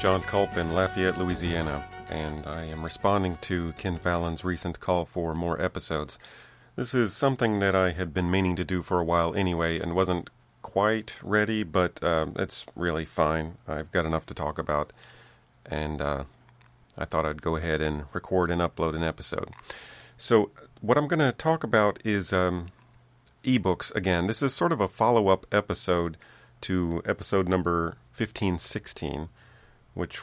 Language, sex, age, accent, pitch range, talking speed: English, male, 40-59, American, 80-95 Hz, 165 wpm